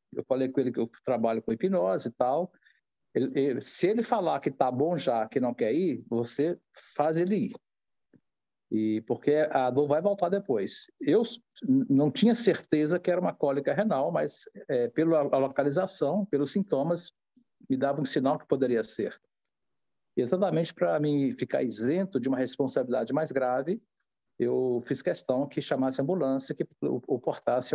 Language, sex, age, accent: Portuguese, male, 50-69, Brazilian